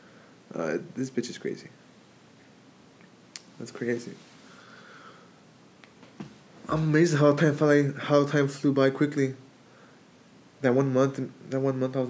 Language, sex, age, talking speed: English, male, 20-39, 115 wpm